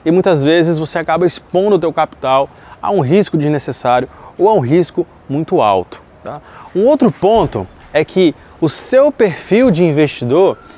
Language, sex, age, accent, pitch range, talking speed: Portuguese, male, 20-39, Brazilian, 150-195 Hz, 165 wpm